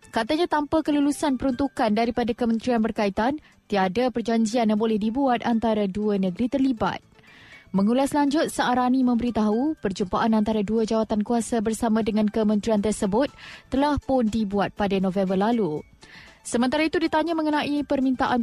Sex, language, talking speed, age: female, Malay, 130 wpm, 20-39